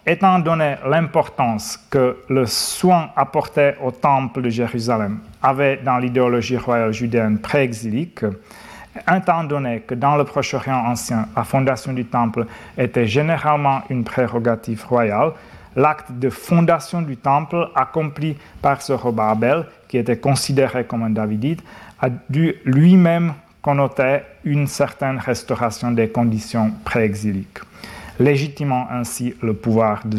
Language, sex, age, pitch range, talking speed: French, male, 40-59, 115-150 Hz, 125 wpm